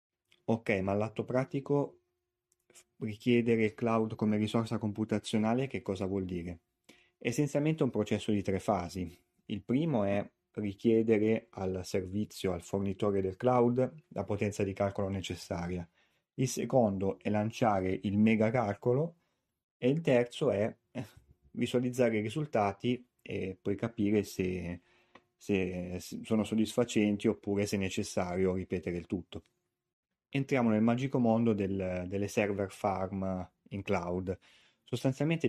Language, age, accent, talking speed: Italian, 30-49, native, 125 wpm